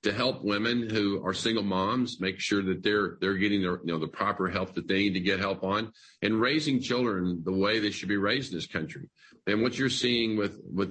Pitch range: 95-110 Hz